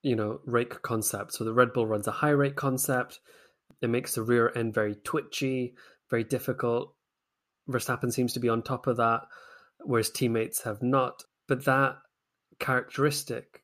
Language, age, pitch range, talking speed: English, 20-39, 110-125 Hz, 165 wpm